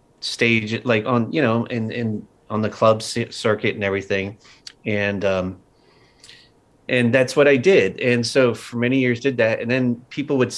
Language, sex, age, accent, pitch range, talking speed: English, male, 30-49, American, 100-120 Hz, 175 wpm